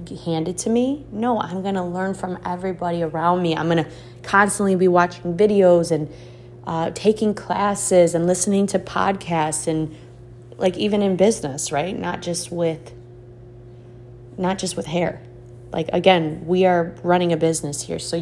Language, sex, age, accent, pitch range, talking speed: English, female, 30-49, American, 150-190 Hz, 160 wpm